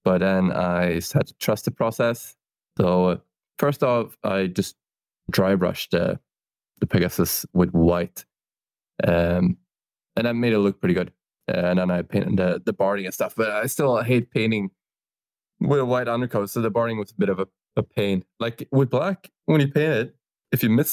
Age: 20-39